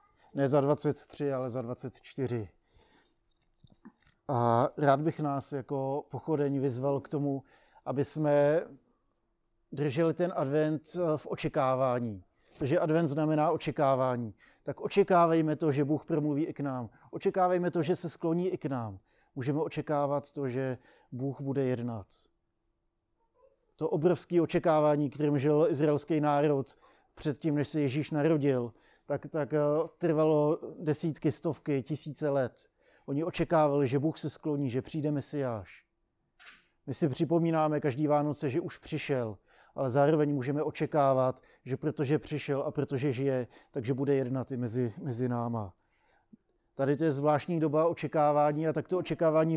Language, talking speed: Czech, 135 wpm